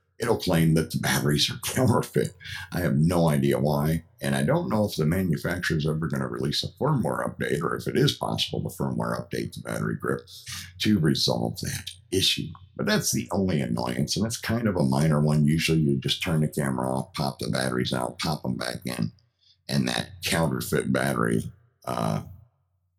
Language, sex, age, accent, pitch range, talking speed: English, male, 50-69, American, 75-110 Hz, 190 wpm